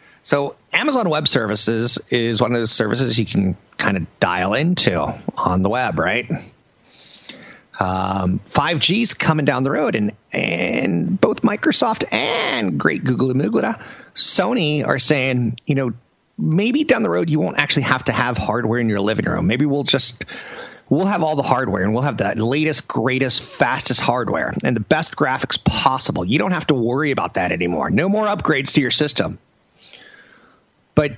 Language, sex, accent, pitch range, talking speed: English, male, American, 115-155 Hz, 175 wpm